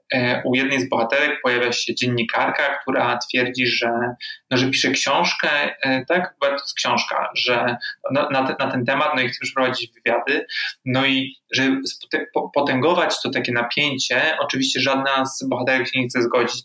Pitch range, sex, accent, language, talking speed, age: 120-140 Hz, male, native, Polish, 160 wpm, 20-39